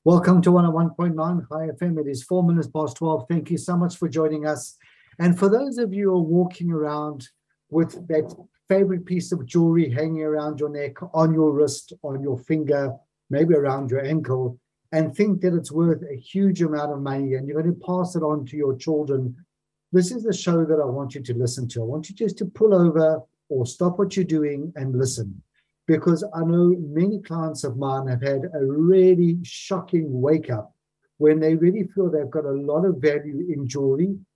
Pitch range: 140-175 Hz